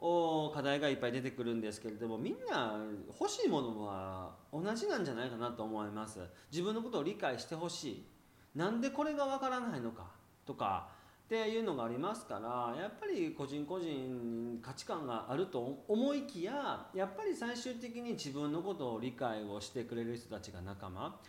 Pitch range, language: 105-180 Hz, Japanese